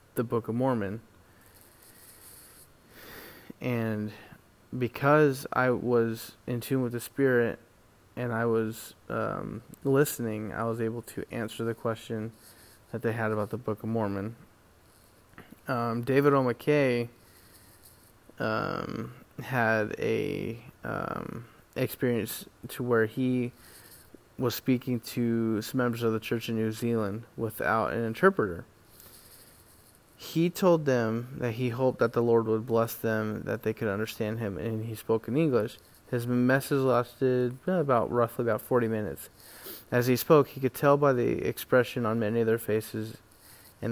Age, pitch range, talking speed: 20-39, 110-125 Hz, 140 wpm